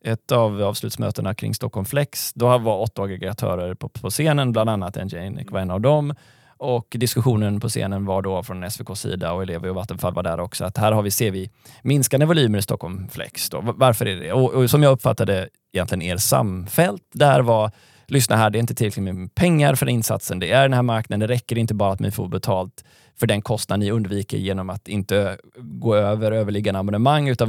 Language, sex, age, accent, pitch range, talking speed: Swedish, male, 20-39, native, 100-125 Hz, 205 wpm